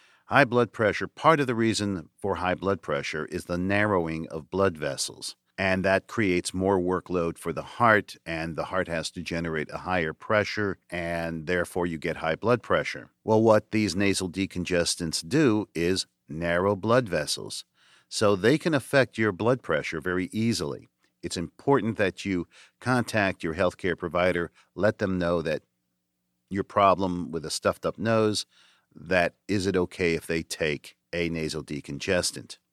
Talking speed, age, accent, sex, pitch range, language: 160 wpm, 50-69, American, male, 85-105 Hz, English